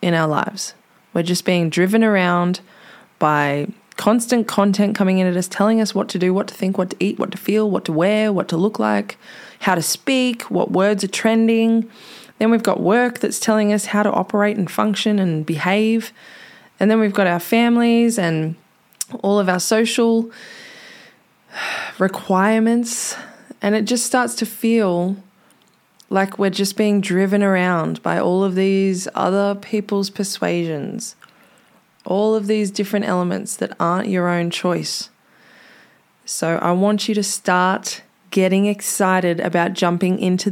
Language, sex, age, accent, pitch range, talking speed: English, female, 20-39, Australian, 180-215 Hz, 160 wpm